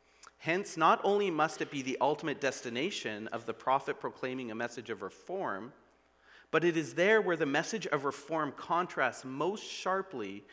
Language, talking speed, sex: English, 165 wpm, male